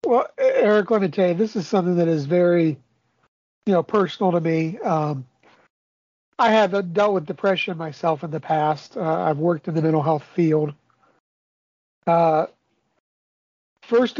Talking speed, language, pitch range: 160 wpm, English, 155-195 Hz